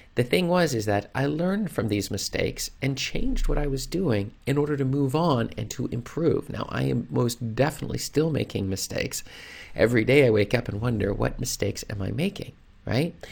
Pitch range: 100-140 Hz